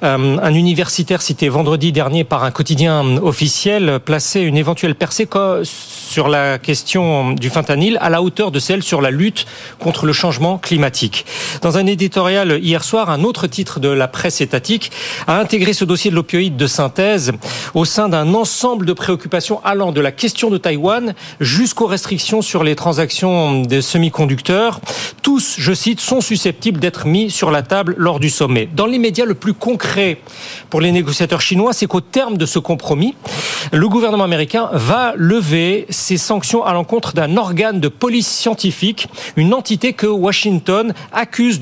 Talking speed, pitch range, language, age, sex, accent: 170 wpm, 155-205 Hz, French, 40-59, male, French